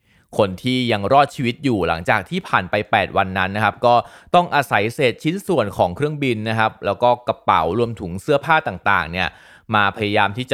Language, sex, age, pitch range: Thai, male, 20-39, 100-130 Hz